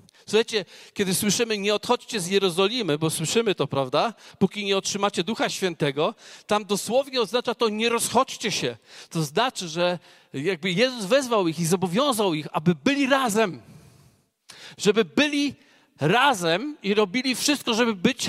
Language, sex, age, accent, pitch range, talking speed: Polish, male, 40-59, native, 185-255 Hz, 140 wpm